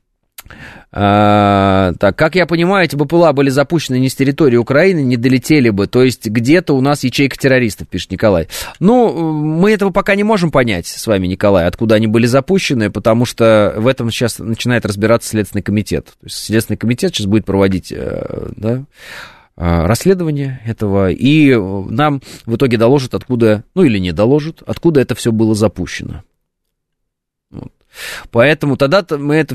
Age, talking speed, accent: 20-39, 155 wpm, native